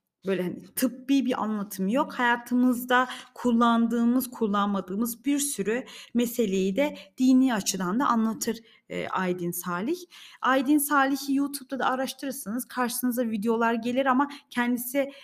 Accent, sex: native, female